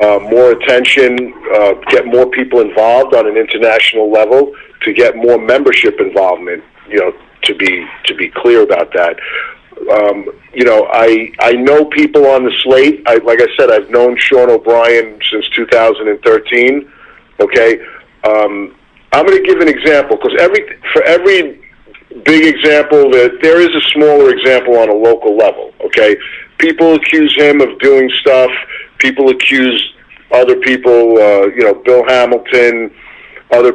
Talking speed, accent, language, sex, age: 155 wpm, American, English, male, 50-69